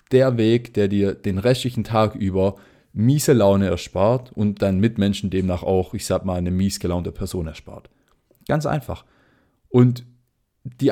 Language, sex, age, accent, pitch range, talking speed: German, male, 20-39, German, 100-125 Hz, 155 wpm